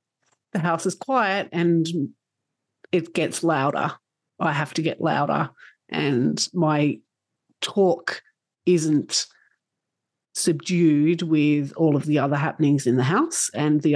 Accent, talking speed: Australian, 125 wpm